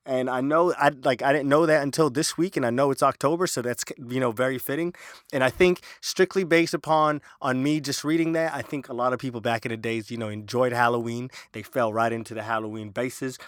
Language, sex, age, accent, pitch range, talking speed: English, male, 20-39, American, 120-145 Hz, 245 wpm